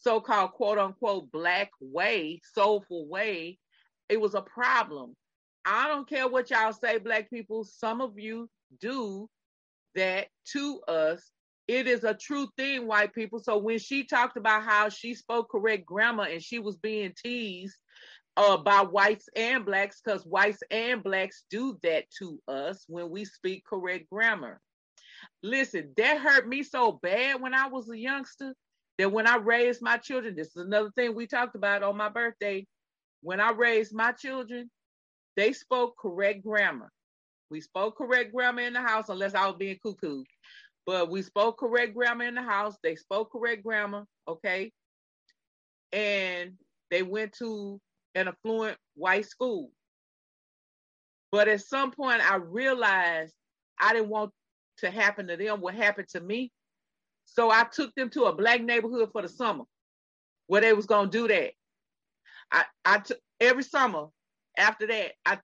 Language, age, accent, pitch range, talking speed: English, 40-59, American, 195-240 Hz, 160 wpm